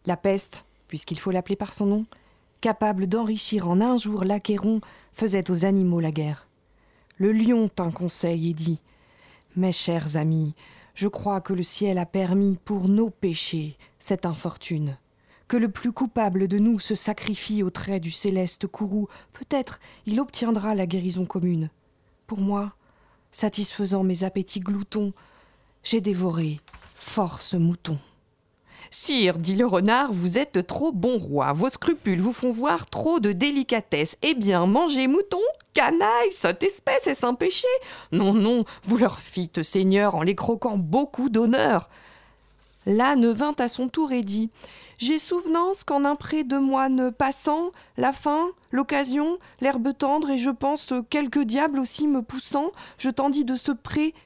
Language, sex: French, female